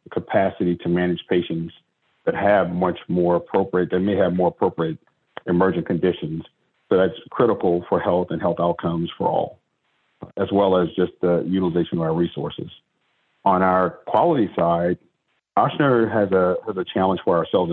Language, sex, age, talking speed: English, male, 40-59, 160 wpm